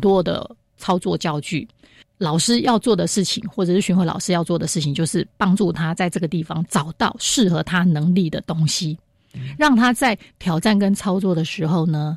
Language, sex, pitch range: Chinese, female, 170-200 Hz